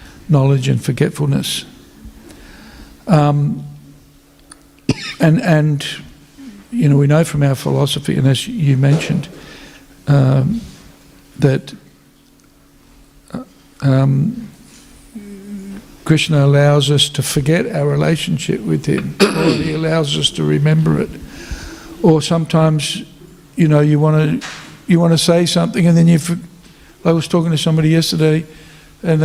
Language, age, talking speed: English, 60-79, 120 wpm